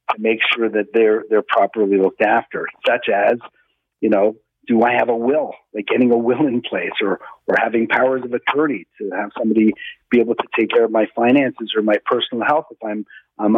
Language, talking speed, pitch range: English, 210 wpm, 110-130 Hz